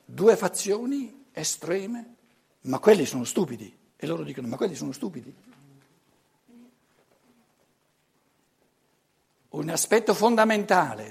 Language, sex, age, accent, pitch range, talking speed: Italian, male, 60-79, native, 165-220 Hz, 90 wpm